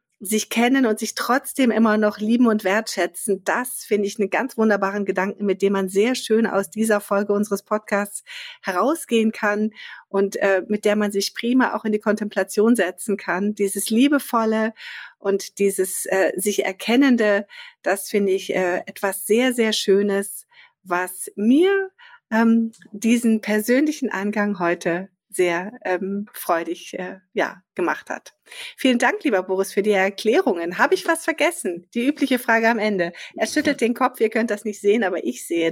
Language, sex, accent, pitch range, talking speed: German, female, German, 195-240 Hz, 165 wpm